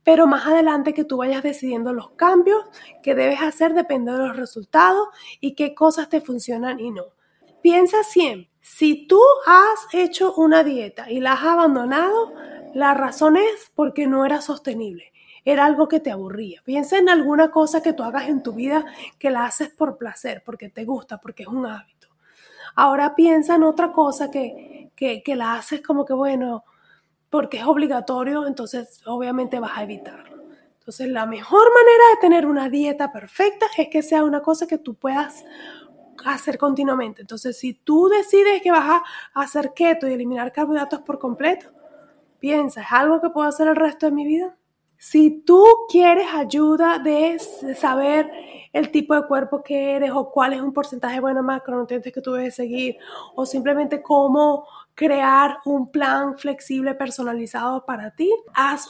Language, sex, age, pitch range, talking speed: Spanish, female, 30-49, 265-330 Hz, 170 wpm